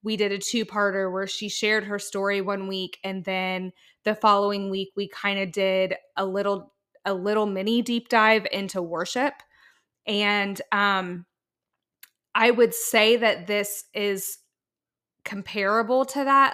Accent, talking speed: American, 145 wpm